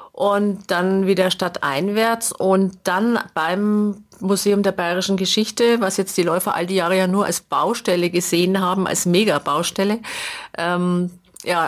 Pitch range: 180-210 Hz